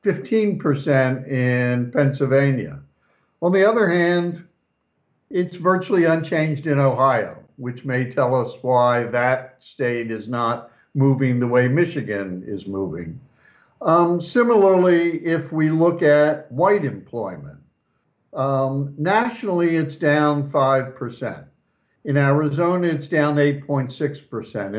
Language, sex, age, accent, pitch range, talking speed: English, male, 60-79, American, 130-165 Hz, 105 wpm